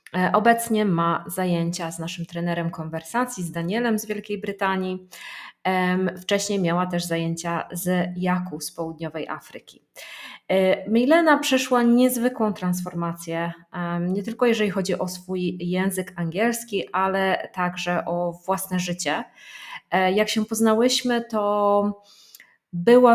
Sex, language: female, Polish